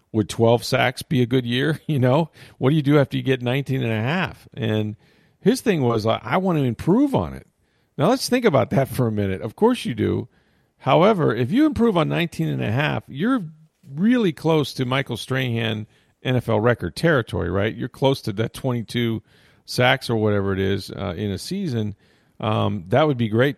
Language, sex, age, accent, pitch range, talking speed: English, male, 40-59, American, 105-130 Hz, 210 wpm